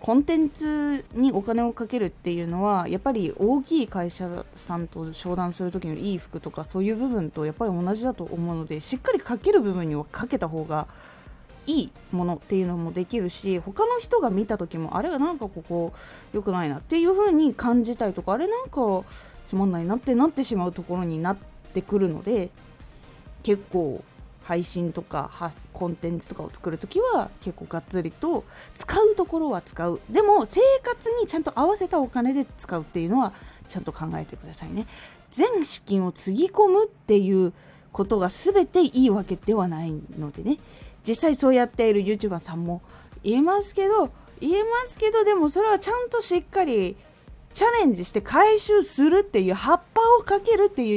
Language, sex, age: Japanese, female, 20-39